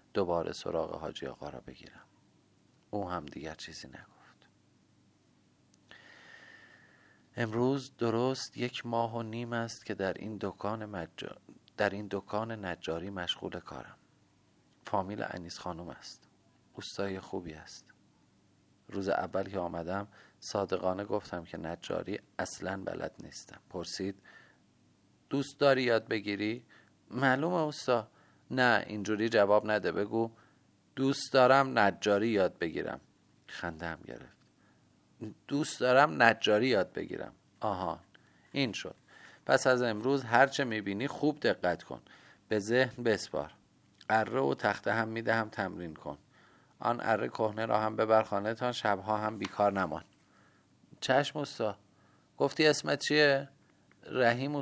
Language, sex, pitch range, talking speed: Persian, male, 100-125 Hz, 120 wpm